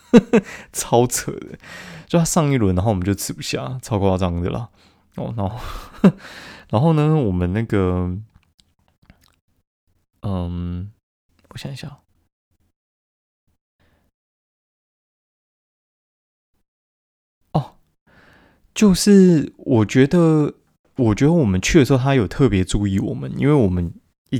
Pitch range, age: 90-120 Hz, 20-39